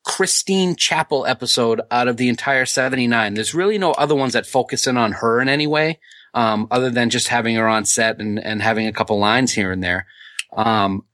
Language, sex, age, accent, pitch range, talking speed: English, male, 30-49, American, 110-135 Hz, 210 wpm